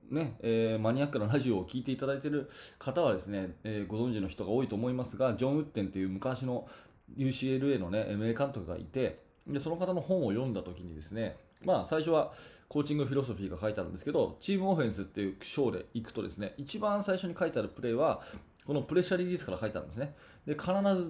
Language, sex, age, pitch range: Japanese, male, 20-39, 110-150 Hz